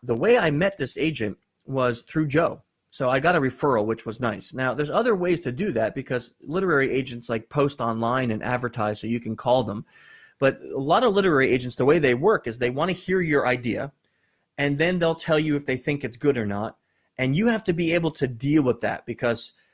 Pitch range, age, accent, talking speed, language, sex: 115-155 Hz, 30-49, American, 235 wpm, English, male